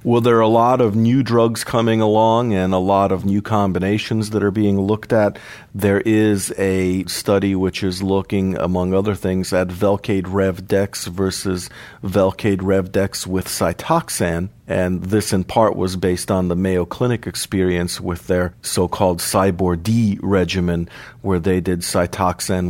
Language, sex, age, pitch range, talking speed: English, male, 50-69, 90-105 Hz, 160 wpm